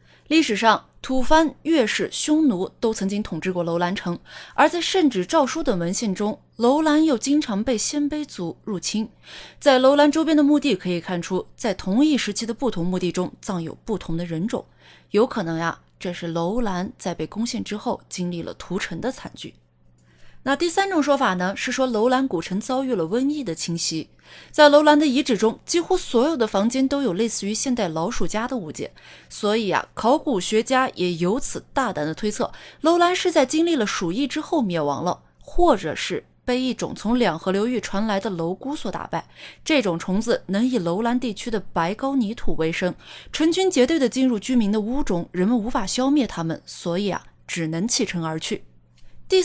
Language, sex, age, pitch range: Chinese, female, 20-39, 180-275 Hz